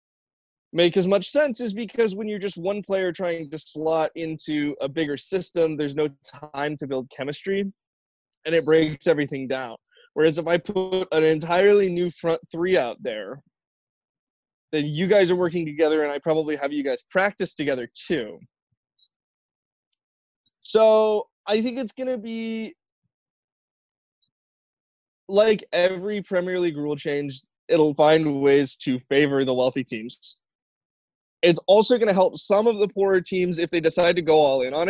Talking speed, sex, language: 160 wpm, male, English